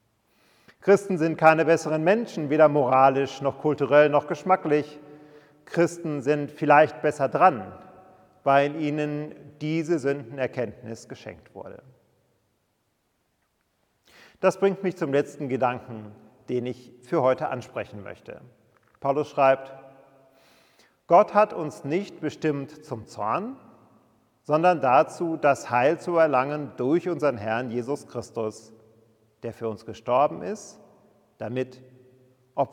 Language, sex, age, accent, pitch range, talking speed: German, male, 40-59, German, 125-165 Hz, 110 wpm